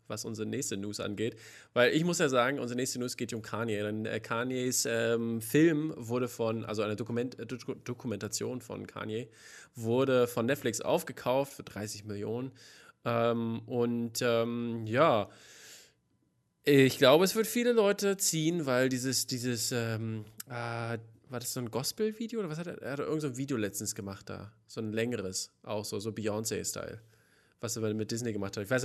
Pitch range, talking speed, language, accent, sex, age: 110-135 Hz, 180 wpm, German, German, male, 20-39